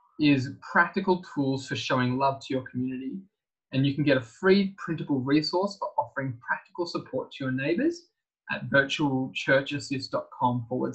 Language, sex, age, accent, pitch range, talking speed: English, male, 20-39, Australian, 135-200 Hz, 150 wpm